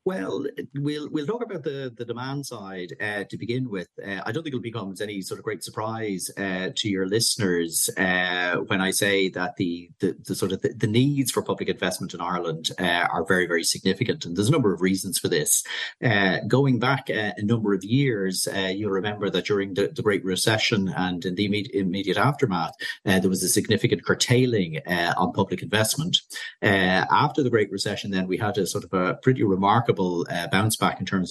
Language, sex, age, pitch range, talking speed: English, male, 40-59, 95-120 Hz, 210 wpm